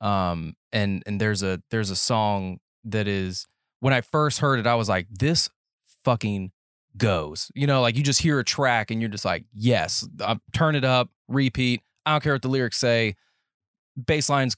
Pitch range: 105-135 Hz